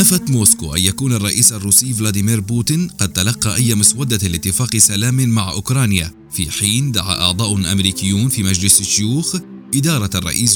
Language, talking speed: Arabic, 150 wpm